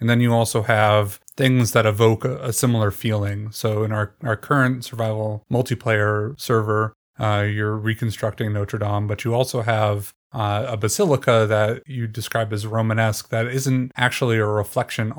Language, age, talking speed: English, 30-49, 160 wpm